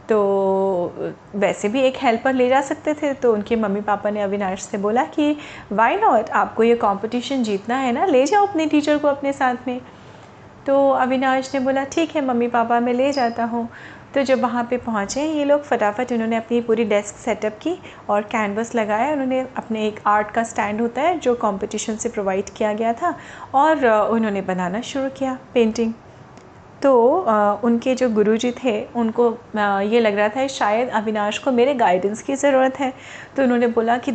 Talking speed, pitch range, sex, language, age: 190 wpm, 210-255 Hz, female, Hindi, 30-49